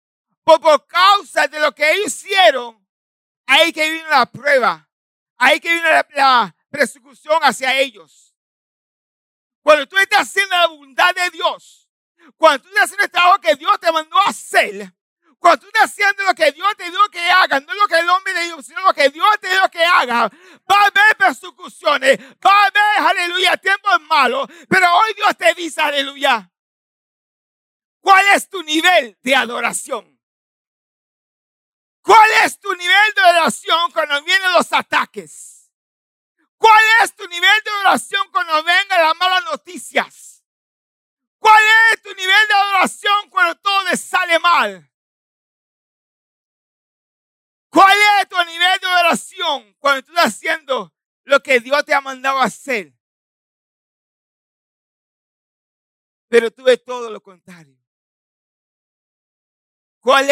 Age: 50-69